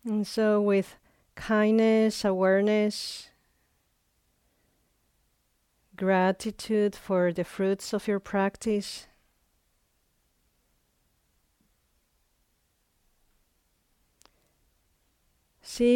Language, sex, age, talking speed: English, female, 40-59, 50 wpm